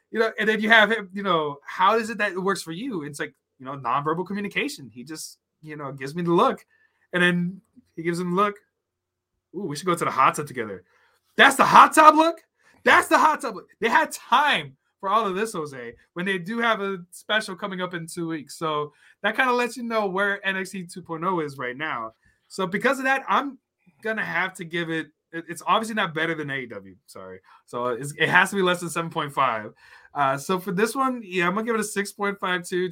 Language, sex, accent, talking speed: English, male, American, 235 wpm